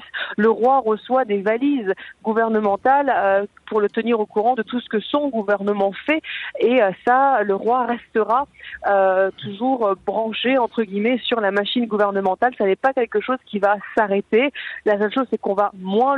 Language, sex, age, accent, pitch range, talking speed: French, female, 40-59, French, 200-245 Hz, 185 wpm